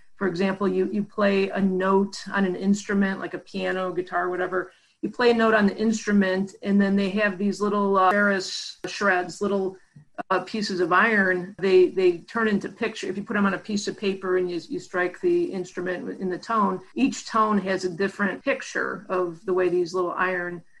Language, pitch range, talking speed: English, 185-210 Hz, 205 wpm